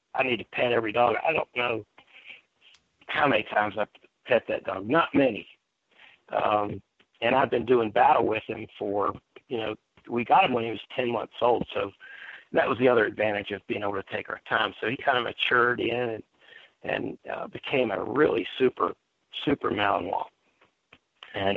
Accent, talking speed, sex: American, 185 wpm, male